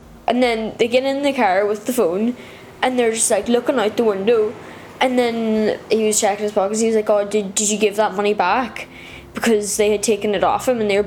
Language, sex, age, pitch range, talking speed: English, female, 10-29, 205-255 Hz, 250 wpm